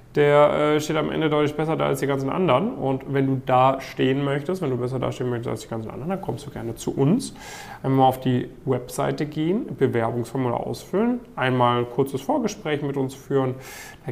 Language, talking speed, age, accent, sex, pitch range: German, 205 wpm, 10-29, German, male, 125-140 Hz